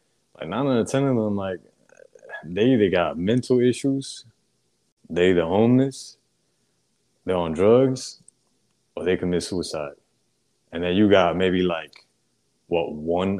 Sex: male